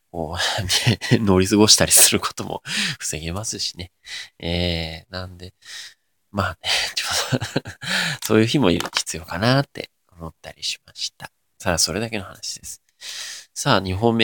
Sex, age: male, 20-39